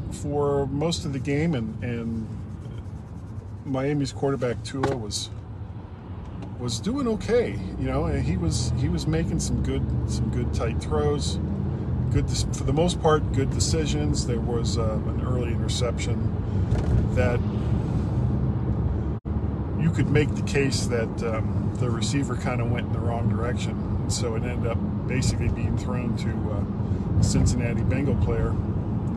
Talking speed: 150 wpm